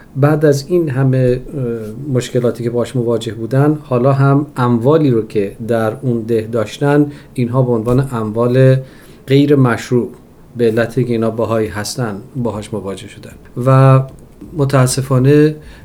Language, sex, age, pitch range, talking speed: Persian, male, 40-59, 115-130 Hz, 130 wpm